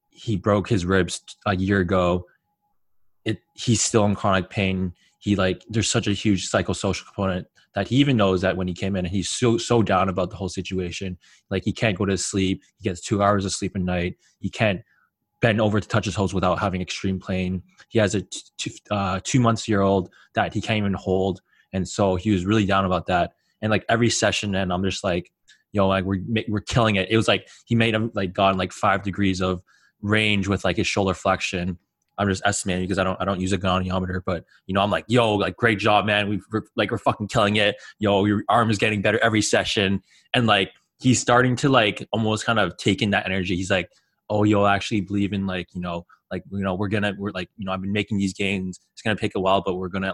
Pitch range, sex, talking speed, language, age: 95-105 Hz, male, 240 wpm, English, 20-39